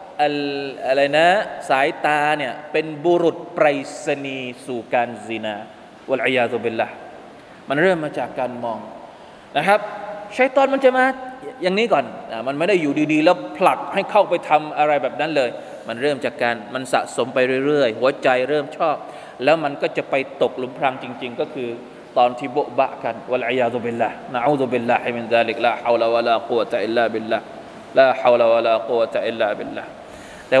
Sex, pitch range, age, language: male, 140-215 Hz, 20-39, Thai